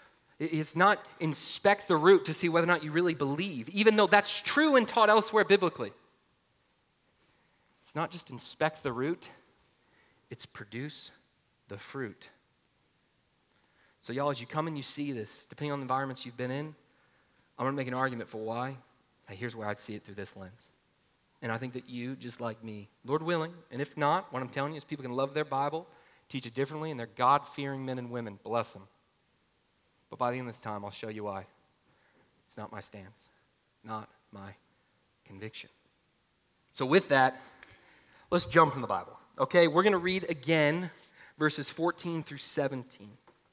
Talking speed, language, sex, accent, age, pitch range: 185 wpm, English, male, American, 30-49, 120-170 Hz